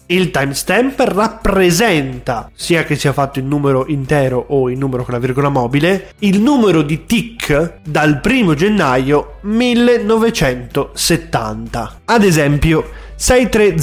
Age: 20-39